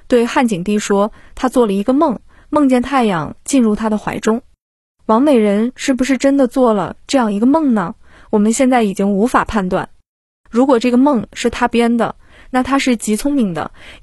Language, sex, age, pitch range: Chinese, female, 20-39, 210-255 Hz